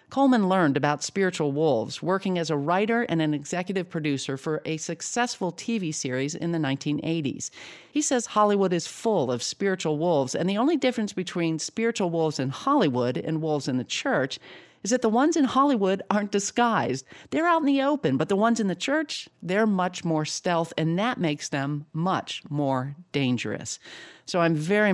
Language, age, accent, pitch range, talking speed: English, 50-69, American, 140-190 Hz, 185 wpm